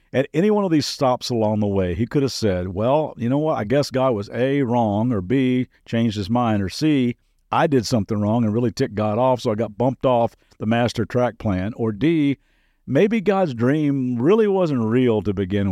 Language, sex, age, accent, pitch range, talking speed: English, male, 50-69, American, 110-140 Hz, 220 wpm